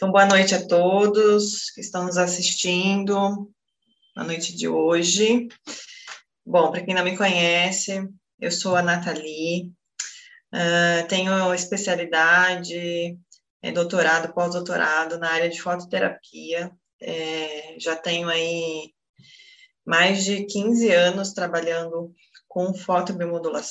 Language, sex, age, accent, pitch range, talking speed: Portuguese, female, 20-39, Brazilian, 170-190 Hz, 100 wpm